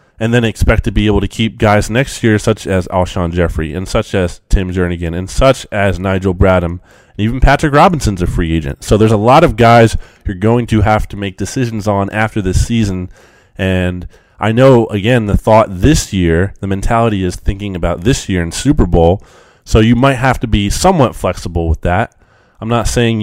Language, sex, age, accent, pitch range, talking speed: English, male, 20-39, American, 90-115 Hz, 205 wpm